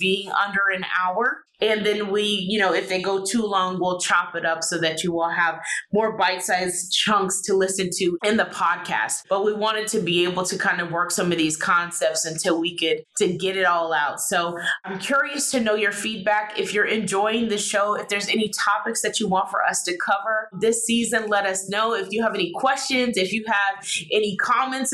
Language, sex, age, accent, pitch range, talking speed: English, female, 20-39, American, 180-220 Hz, 225 wpm